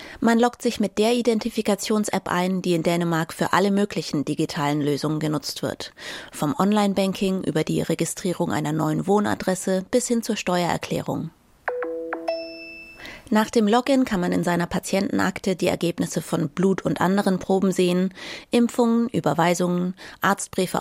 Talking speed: 140 wpm